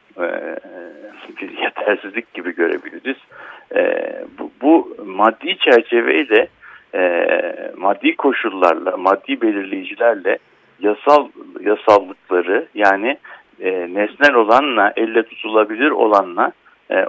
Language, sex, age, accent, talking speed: Turkish, male, 60-79, native, 90 wpm